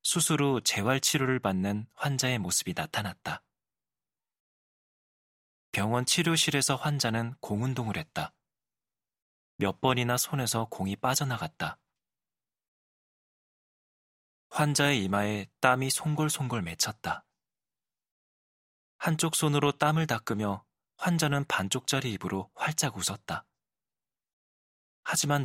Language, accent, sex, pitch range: Korean, native, male, 100-140 Hz